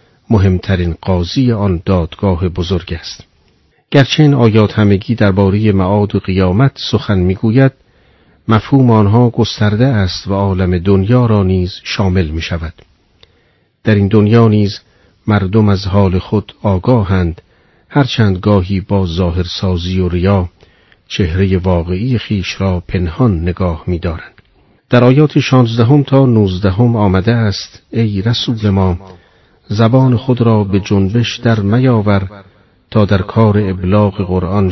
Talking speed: 130 wpm